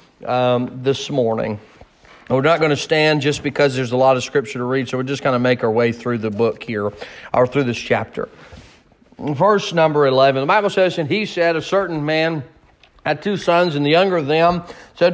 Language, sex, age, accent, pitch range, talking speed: English, male, 40-59, American, 155-195 Hz, 215 wpm